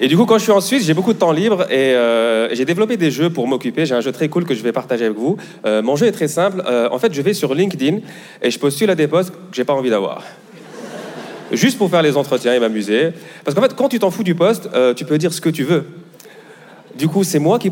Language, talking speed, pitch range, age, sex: French, 290 wpm, 135-185 Hz, 30-49, male